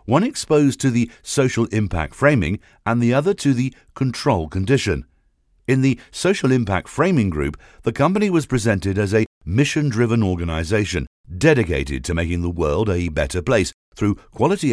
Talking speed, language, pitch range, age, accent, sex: 155 wpm, English, 80-120 Hz, 50-69, British, male